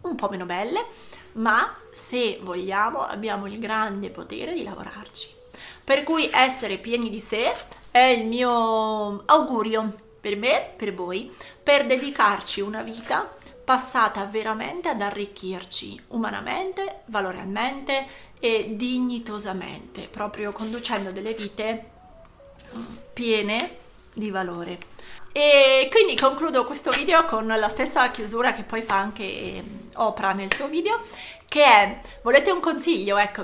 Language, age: Italian, 30-49